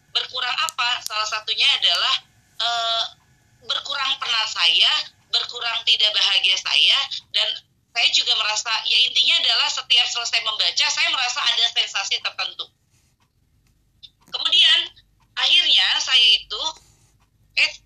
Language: Indonesian